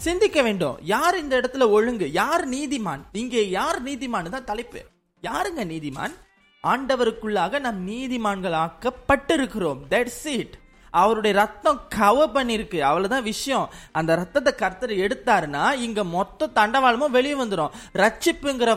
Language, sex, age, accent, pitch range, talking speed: Tamil, male, 20-39, native, 205-275 Hz, 110 wpm